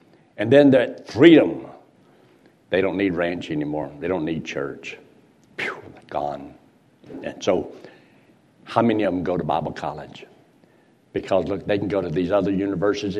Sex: male